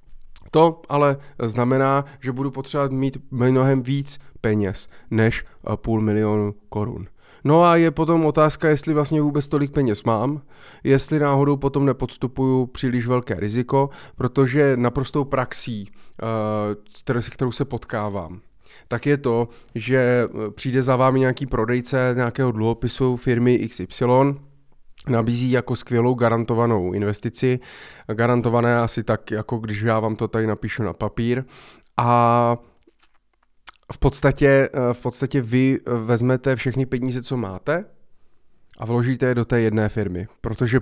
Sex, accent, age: male, native, 20-39